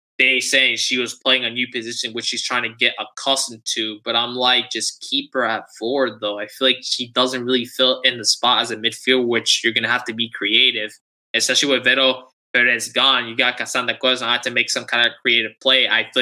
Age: 10-29